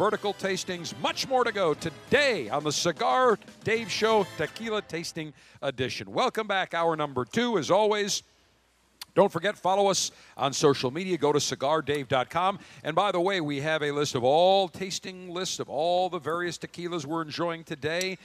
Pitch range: 145-195 Hz